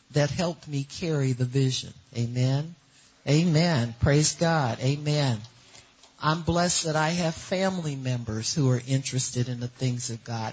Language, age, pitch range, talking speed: English, 50-69, 135-170 Hz, 150 wpm